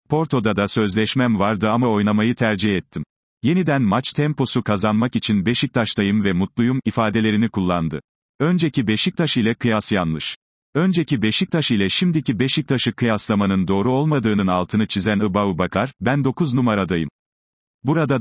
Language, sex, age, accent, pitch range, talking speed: Turkish, male, 40-59, native, 105-130 Hz, 130 wpm